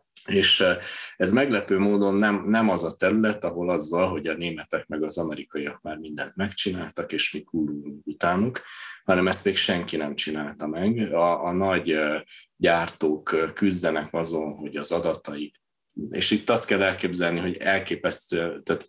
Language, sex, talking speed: Hungarian, male, 155 wpm